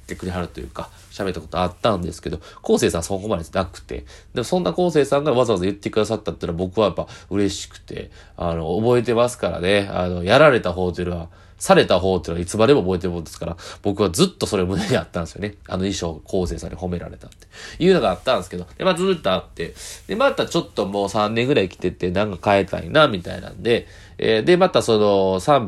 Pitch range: 90-115 Hz